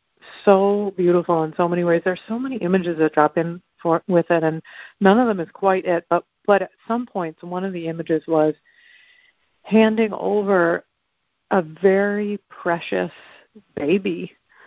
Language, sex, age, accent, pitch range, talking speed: English, female, 50-69, American, 160-195 Hz, 160 wpm